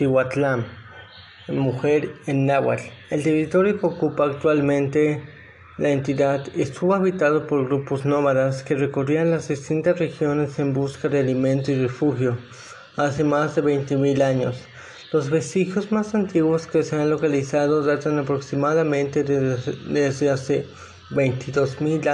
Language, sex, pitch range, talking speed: Spanish, male, 135-160 Hz, 125 wpm